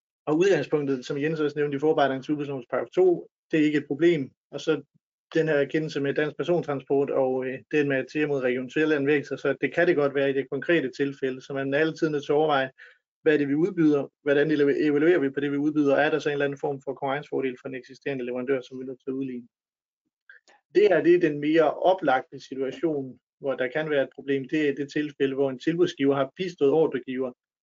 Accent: native